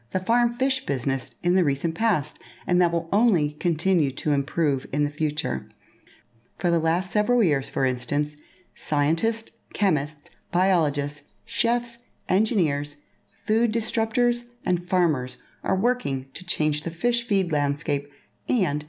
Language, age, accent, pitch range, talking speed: English, 40-59, American, 145-200 Hz, 135 wpm